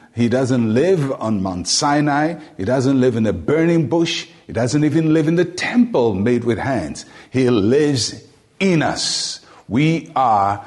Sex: male